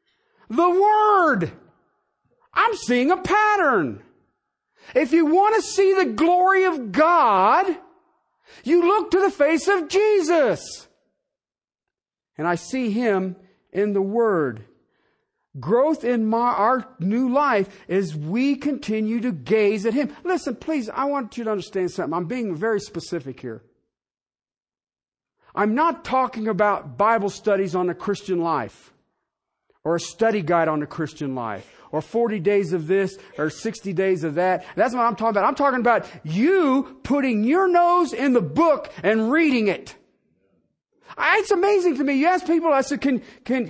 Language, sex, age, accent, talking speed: English, male, 50-69, American, 155 wpm